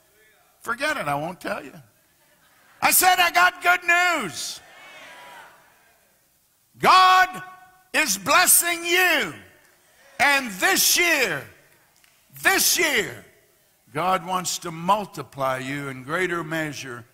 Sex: male